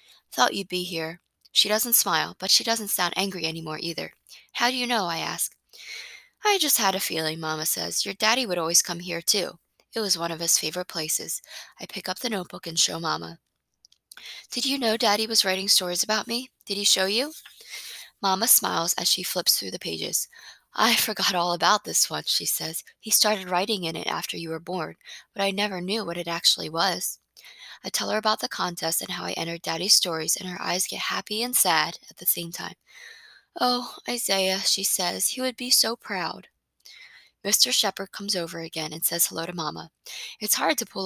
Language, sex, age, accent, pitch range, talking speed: English, female, 20-39, American, 170-220 Hz, 205 wpm